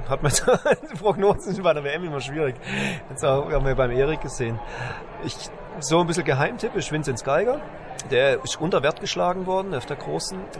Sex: male